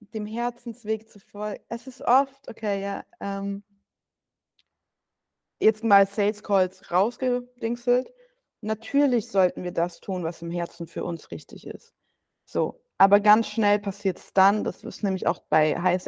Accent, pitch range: German, 185-220 Hz